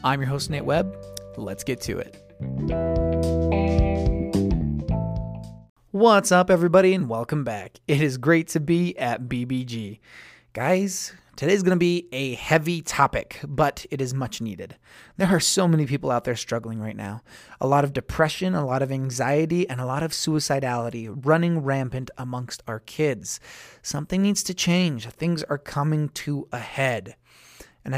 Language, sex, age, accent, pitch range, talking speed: English, male, 30-49, American, 125-175 Hz, 160 wpm